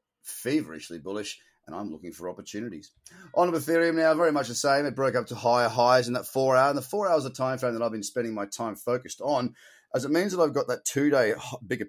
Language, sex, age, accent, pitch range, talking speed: English, male, 30-49, Australian, 115-155 Hz, 245 wpm